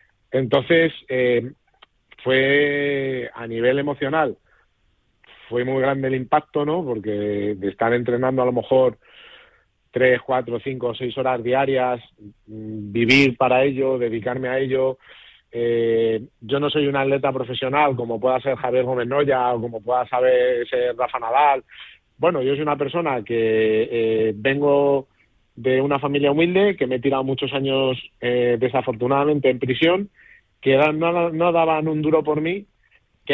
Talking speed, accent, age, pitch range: 145 wpm, Spanish, 40-59, 125-150 Hz